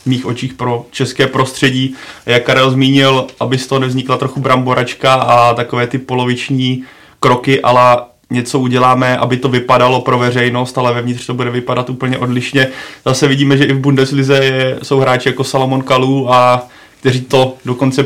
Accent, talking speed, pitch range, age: native, 165 wpm, 125-135 Hz, 30-49